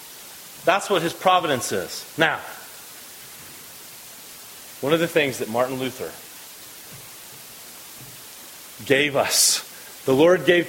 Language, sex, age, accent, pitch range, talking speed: English, male, 30-49, American, 150-190 Hz, 100 wpm